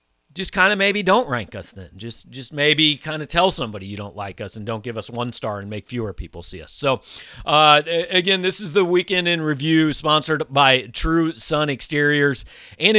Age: 40-59